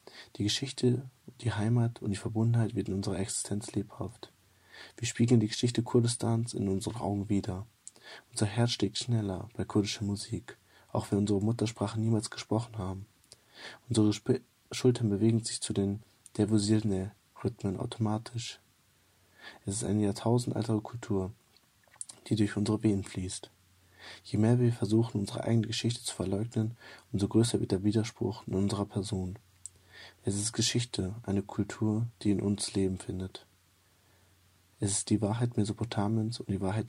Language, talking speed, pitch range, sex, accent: German, 145 wpm, 100-115 Hz, male, German